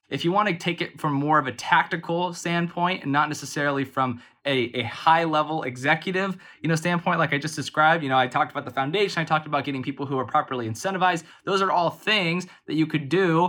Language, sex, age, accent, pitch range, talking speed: English, male, 20-39, American, 130-165 Hz, 225 wpm